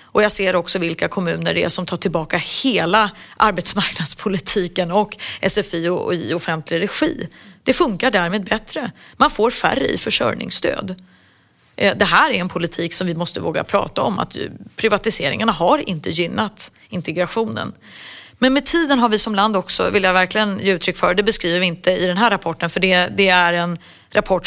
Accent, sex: native, female